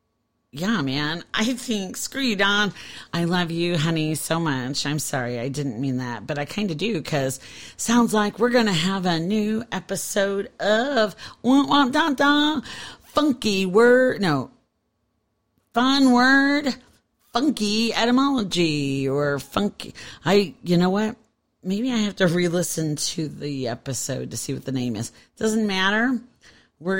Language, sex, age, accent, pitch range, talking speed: English, female, 40-59, American, 145-210 Hz, 150 wpm